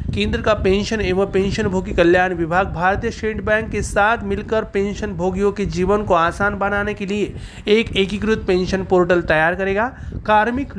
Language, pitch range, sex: Marathi, 180-215 Hz, male